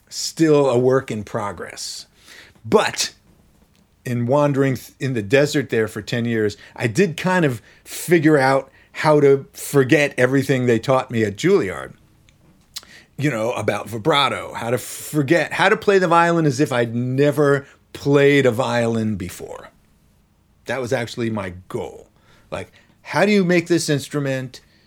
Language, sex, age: English, male, 40-59